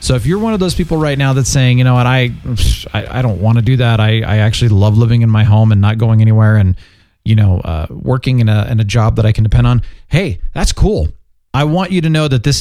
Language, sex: English, male